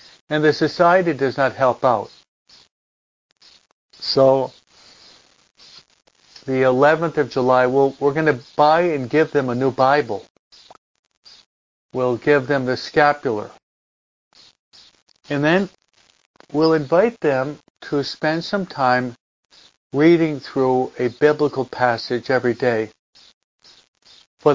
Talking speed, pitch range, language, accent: 110 wpm, 125-155 Hz, English, American